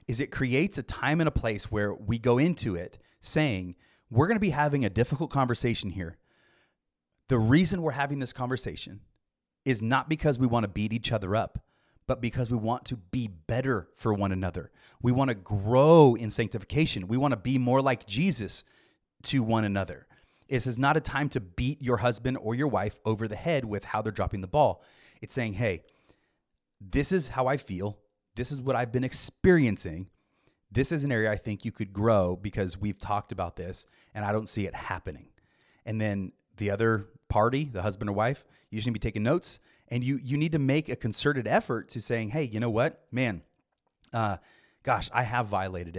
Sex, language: male, English